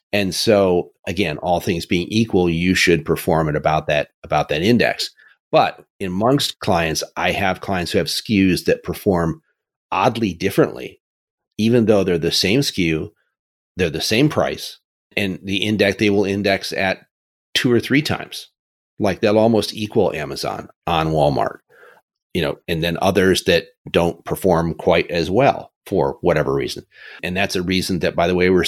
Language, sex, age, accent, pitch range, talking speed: English, male, 40-59, American, 85-110 Hz, 165 wpm